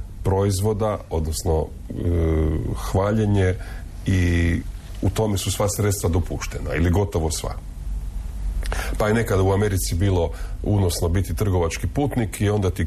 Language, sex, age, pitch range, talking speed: Croatian, male, 40-59, 85-105 Hz, 125 wpm